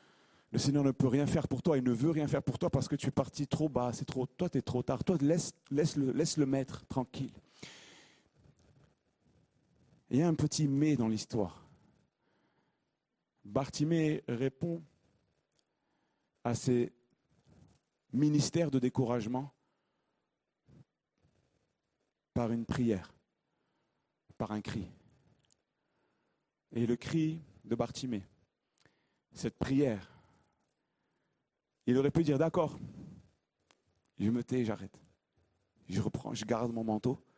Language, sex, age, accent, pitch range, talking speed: French, male, 40-59, French, 115-150 Hz, 130 wpm